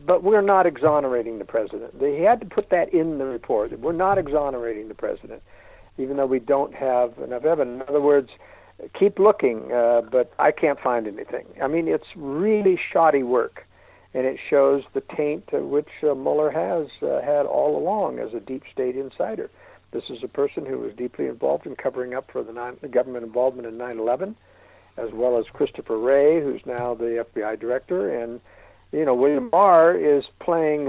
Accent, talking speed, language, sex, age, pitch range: American, 190 wpm, English, male, 60-79, 120-185 Hz